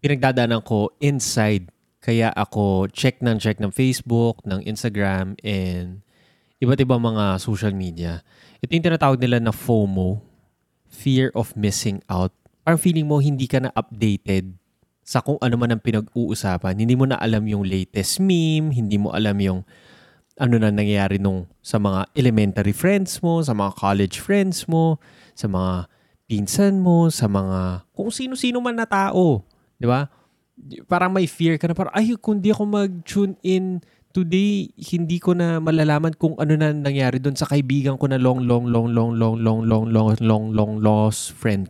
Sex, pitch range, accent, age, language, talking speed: male, 105-155 Hz, native, 20-39, Filipino, 170 wpm